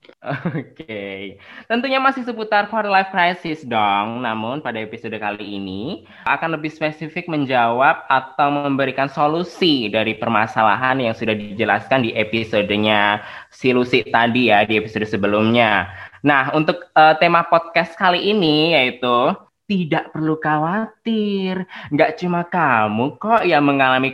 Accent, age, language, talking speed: native, 20-39, Indonesian, 125 wpm